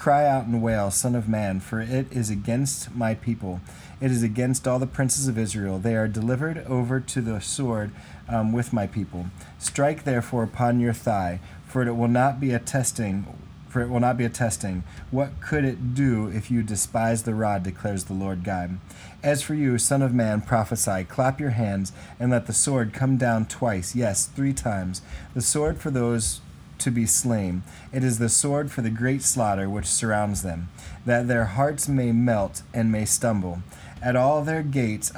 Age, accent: 30-49, American